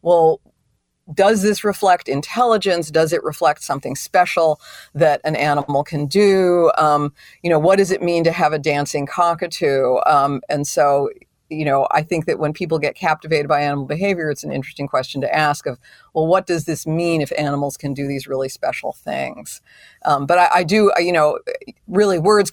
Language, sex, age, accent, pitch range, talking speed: English, female, 50-69, American, 145-175 Hz, 190 wpm